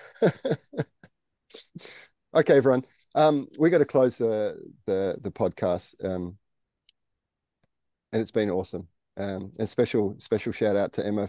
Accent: Australian